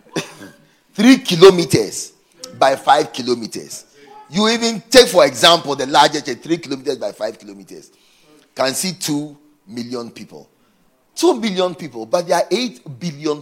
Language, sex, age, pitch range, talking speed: English, male, 40-59, 165-255 Hz, 135 wpm